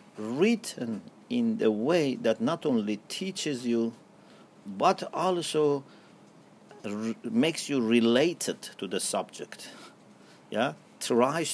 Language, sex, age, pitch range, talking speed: English, male, 50-69, 135-210 Hz, 105 wpm